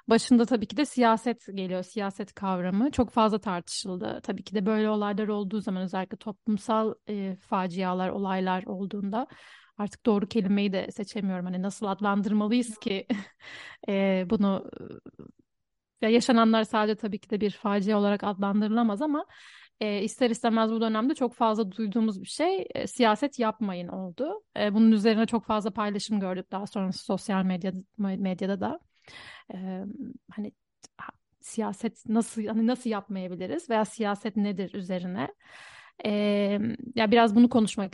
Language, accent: Turkish, native